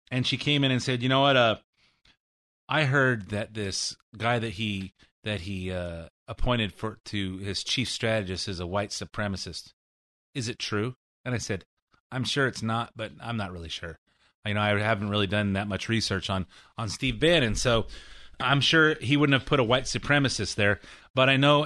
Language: English